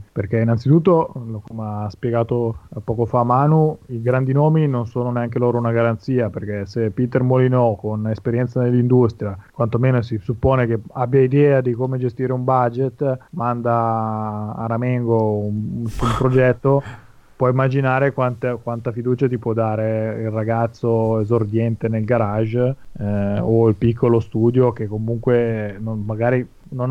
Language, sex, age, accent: Italian, male, 30-49, native